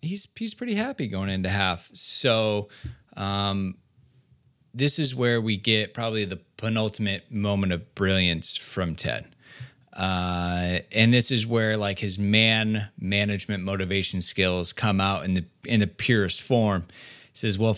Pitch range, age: 105-145 Hz, 20-39